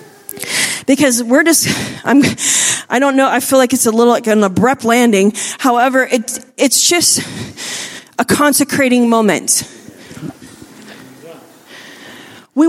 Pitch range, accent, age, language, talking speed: 235-290 Hz, American, 30-49, English, 115 wpm